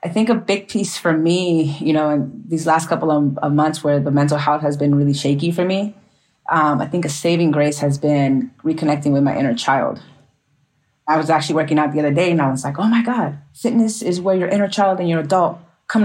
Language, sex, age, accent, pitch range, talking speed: English, female, 30-49, American, 145-170 Hz, 240 wpm